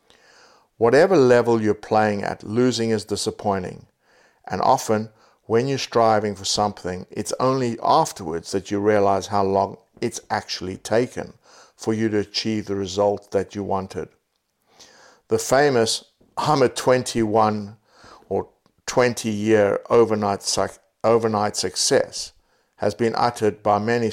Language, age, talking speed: English, 60-79, 130 wpm